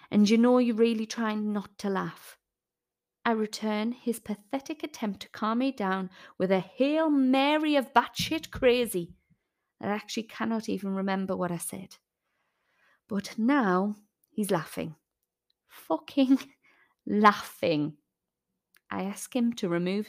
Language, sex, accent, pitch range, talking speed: English, female, British, 185-245 Hz, 130 wpm